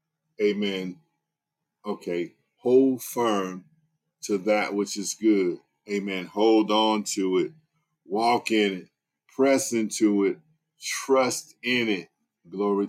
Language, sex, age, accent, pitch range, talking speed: English, male, 50-69, American, 100-115 Hz, 110 wpm